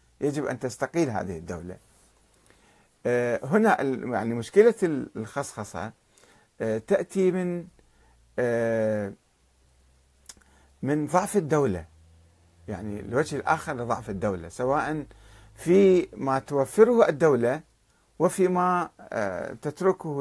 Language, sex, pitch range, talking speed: Arabic, male, 105-155 Hz, 80 wpm